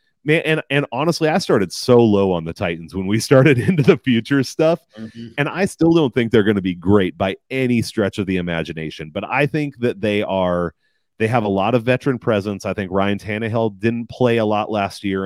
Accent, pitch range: American, 95-130 Hz